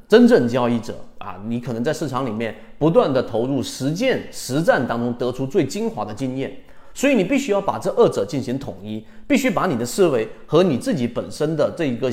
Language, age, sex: Chinese, 30-49, male